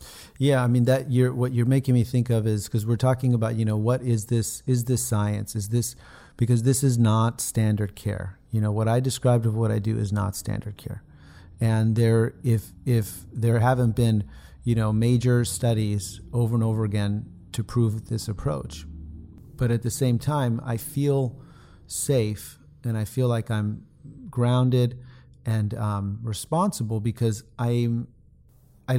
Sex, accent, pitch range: male, American, 105-125 Hz